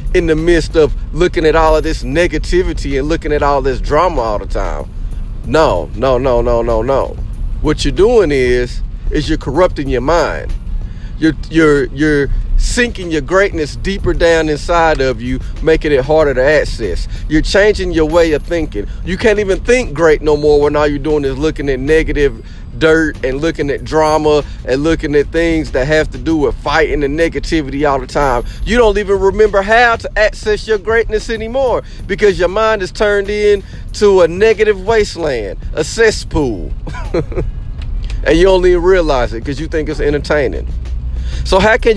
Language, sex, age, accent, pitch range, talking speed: English, male, 40-59, American, 145-205 Hz, 180 wpm